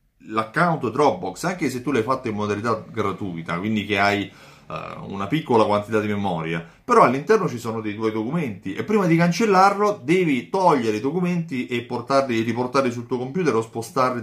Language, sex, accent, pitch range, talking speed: Italian, male, native, 105-140 Hz, 175 wpm